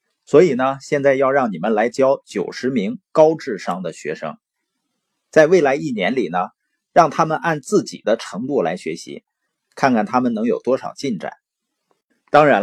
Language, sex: Chinese, male